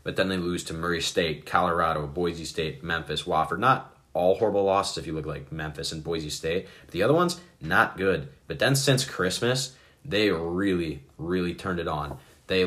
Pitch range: 75-95 Hz